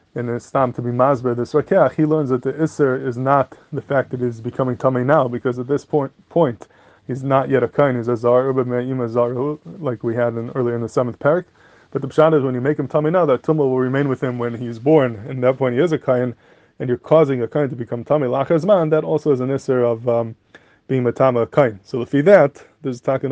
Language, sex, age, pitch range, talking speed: English, male, 20-39, 125-145 Hz, 245 wpm